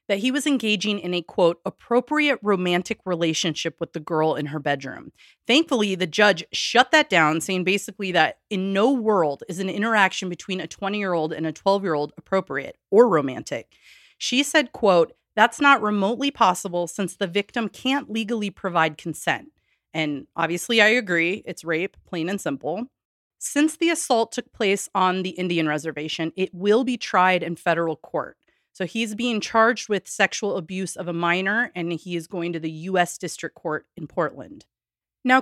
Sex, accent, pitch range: female, American, 170-225 Hz